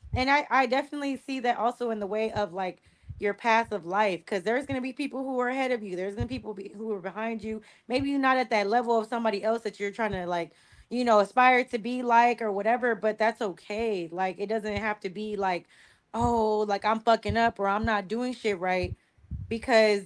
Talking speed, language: 235 wpm, English